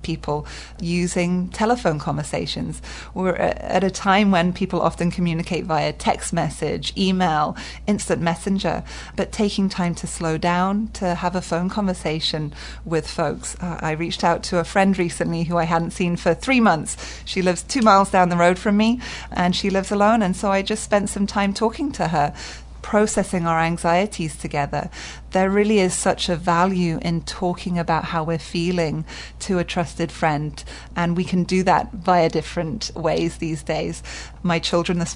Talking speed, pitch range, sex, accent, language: 170 wpm, 165-190 Hz, female, British, English